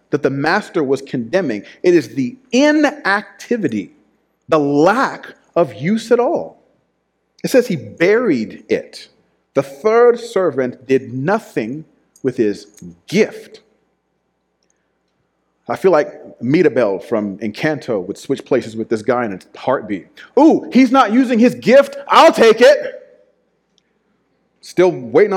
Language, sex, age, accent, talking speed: English, male, 40-59, American, 130 wpm